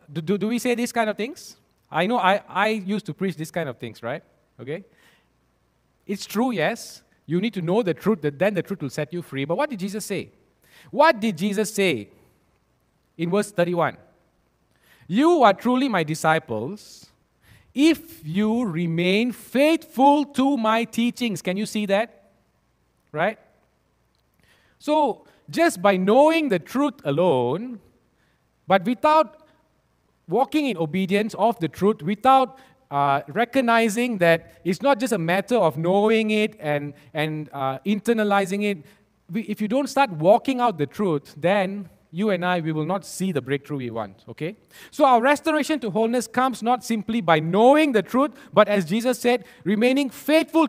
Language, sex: English, male